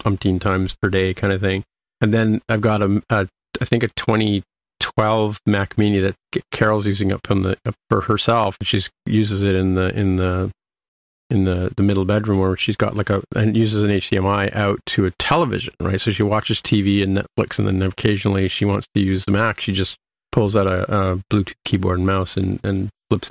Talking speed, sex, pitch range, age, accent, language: 210 wpm, male, 95-110 Hz, 40-59, American, English